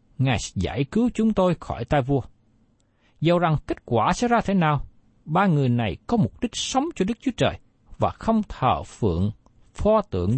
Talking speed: 190 wpm